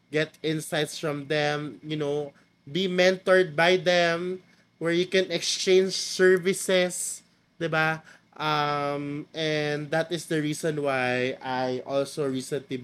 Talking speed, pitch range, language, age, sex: 120 wpm, 130-160 Hz, Filipino, 20-39, male